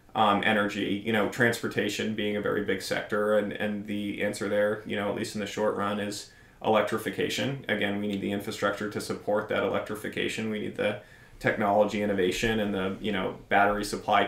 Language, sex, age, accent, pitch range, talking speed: English, male, 20-39, American, 100-110 Hz, 190 wpm